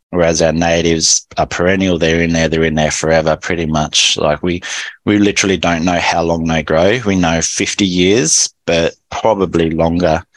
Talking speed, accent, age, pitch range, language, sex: 180 wpm, Australian, 20-39, 80-90 Hz, English, male